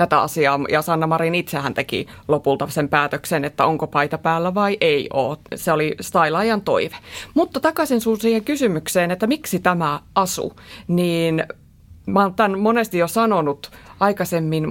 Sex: female